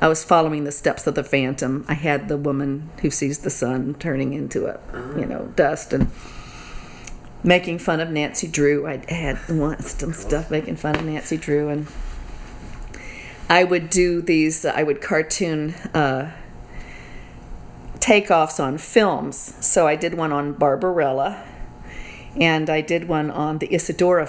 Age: 40-59